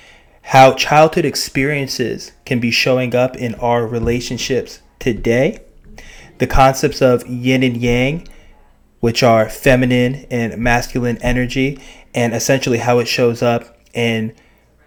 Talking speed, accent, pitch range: 120 wpm, American, 110-125 Hz